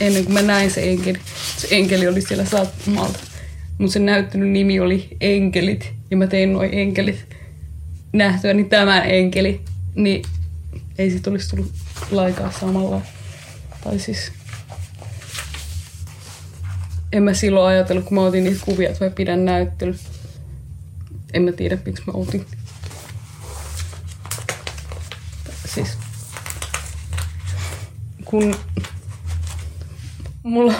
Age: 20-39